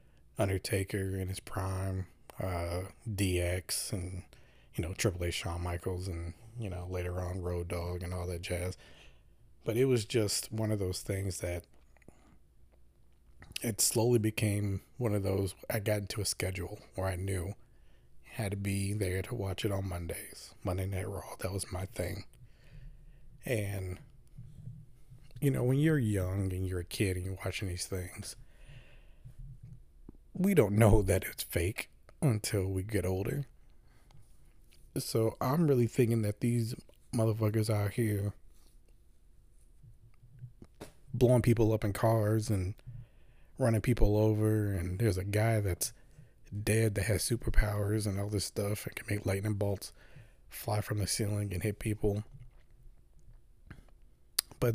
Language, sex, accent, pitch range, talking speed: English, male, American, 95-120 Hz, 145 wpm